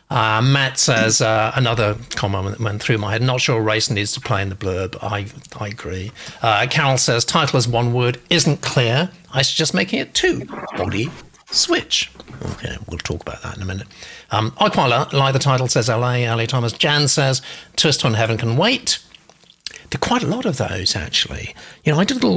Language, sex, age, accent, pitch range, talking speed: English, male, 50-69, British, 110-155 Hz, 210 wpm